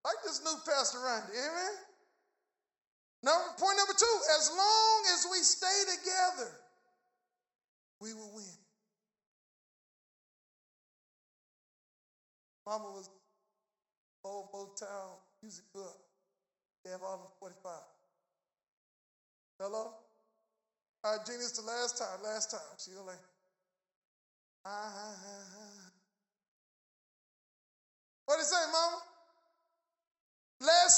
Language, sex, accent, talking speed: English, male, American, 95 wpm